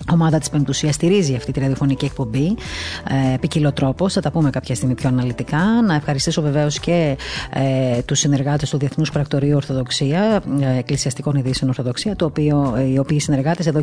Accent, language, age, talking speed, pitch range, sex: native, Greek, 30-49, 160 wpm, 130-155 Hz, female